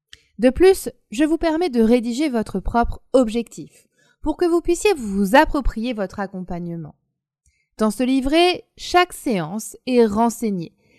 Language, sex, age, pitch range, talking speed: French, female, 20-39, 200-290 Hz, 135 wpm